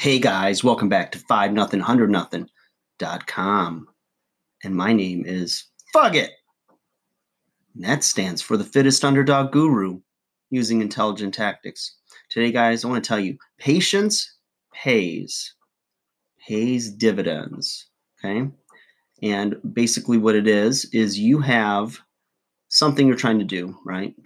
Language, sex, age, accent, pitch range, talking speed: English, male, 30-49, American, 95-125 Hz, 125 wpm